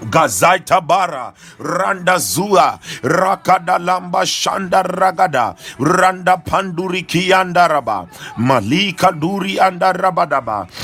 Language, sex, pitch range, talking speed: English, male, 175-190 Hz, 80 wpm